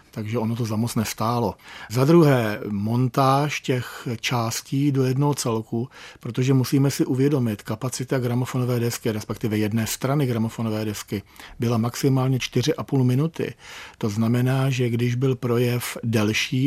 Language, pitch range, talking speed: Czech, 115-135 Hz, 130 wpm